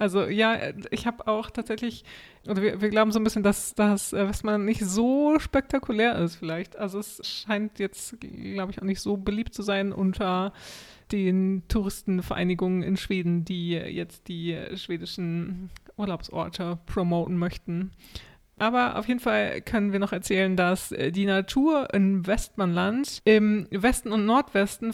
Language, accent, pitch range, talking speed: German, German, 185-220 Hz, 150 wpm